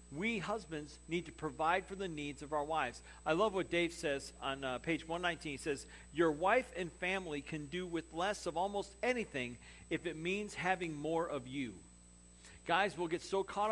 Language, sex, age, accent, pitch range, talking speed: English, male, 50-69, American, 120-175 Hz, 195 wpm